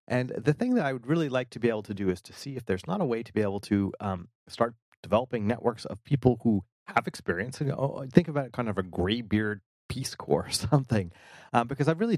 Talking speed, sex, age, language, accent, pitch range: 245 wpm, male, 30-49, English, American, 95-120 Hz